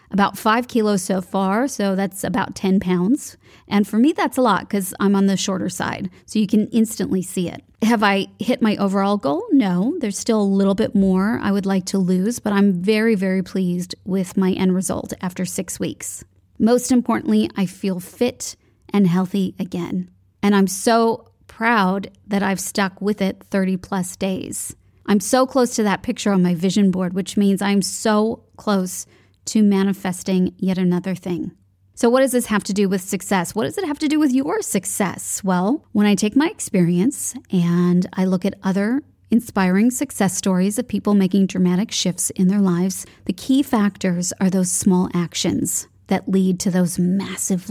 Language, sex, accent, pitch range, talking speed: English, female, American, 185-220 Hz, 190 wpm